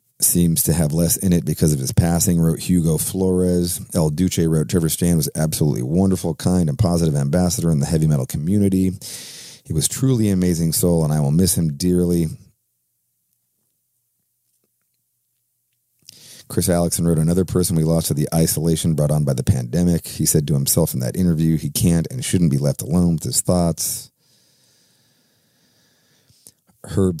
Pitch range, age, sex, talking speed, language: 80-95 Hz, 40-59, male, 165 wpm, English